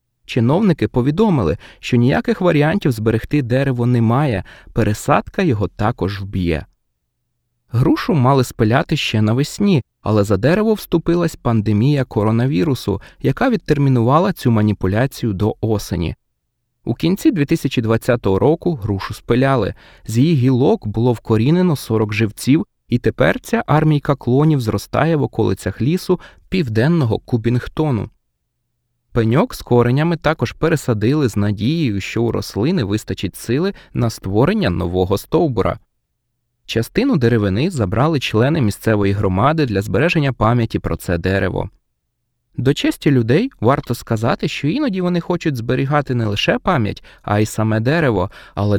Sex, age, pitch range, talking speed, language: male, 20-39, 110-150 Hz, 120 wpm, Ukrainian